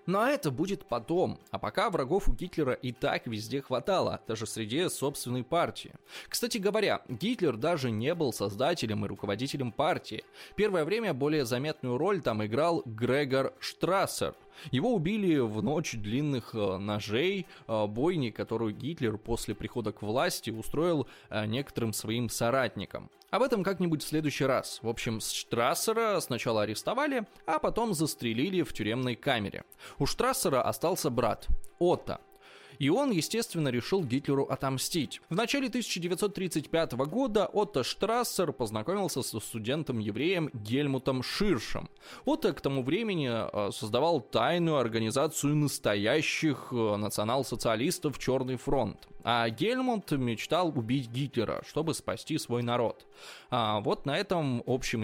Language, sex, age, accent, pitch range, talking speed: Russian, male, 20-39, native, 115-170 Hz, 130 wpm